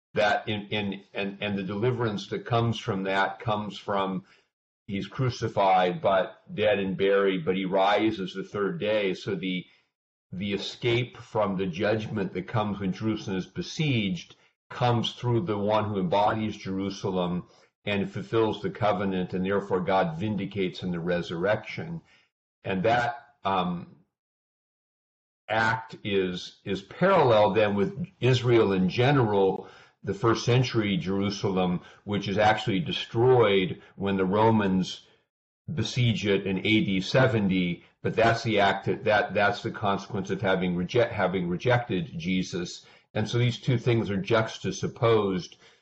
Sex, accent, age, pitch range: male, American, 50-69, 95-115 Hz